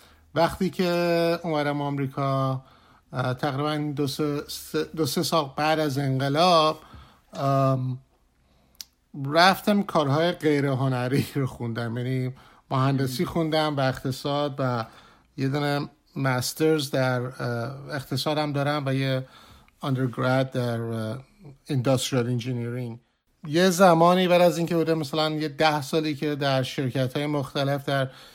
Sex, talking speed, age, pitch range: male, 110 wpm, 50-69, 130-155 Hz